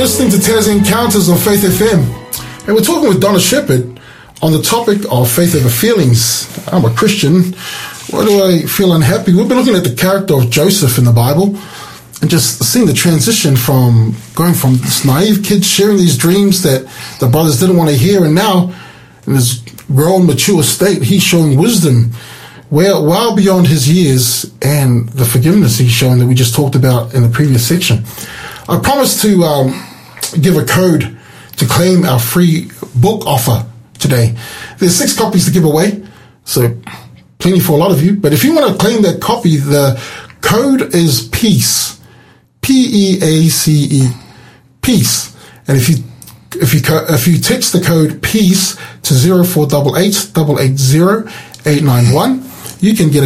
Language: English